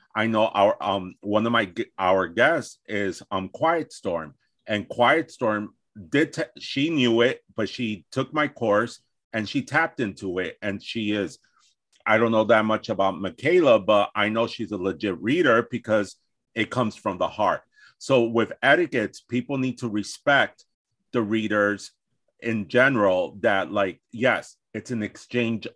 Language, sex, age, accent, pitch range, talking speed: English, male, 40-59, American, 110-125 Hz, 165 wpm